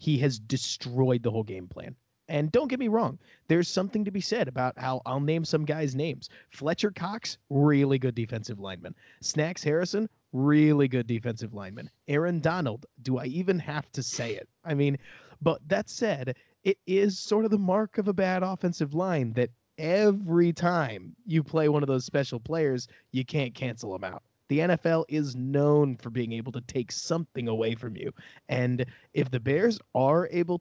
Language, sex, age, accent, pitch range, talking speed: English, male, 30-49, American, 125-165 Hz, 185 wpm